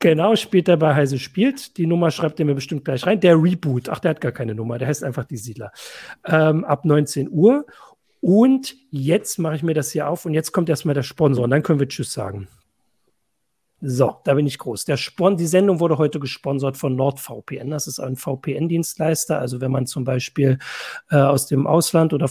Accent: German